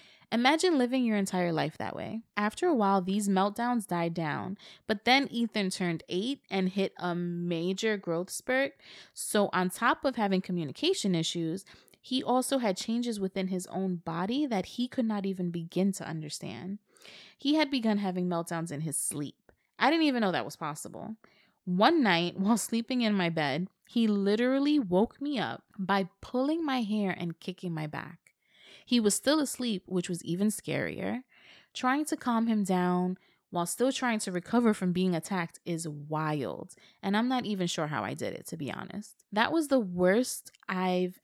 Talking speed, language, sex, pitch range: 180 wpm, English, female, 180-230 Hz